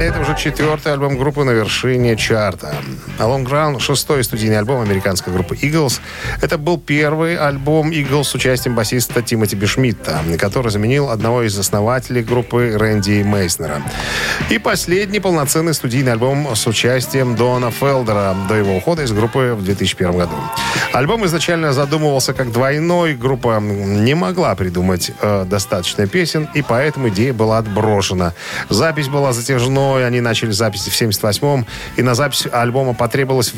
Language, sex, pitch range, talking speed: Russian, male, 105-145 Hz, 145 wpm